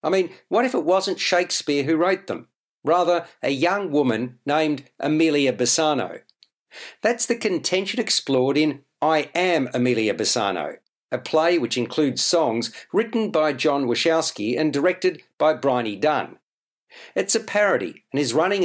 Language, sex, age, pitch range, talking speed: English, male, 50-69, 140-180 Hz, 150 wpm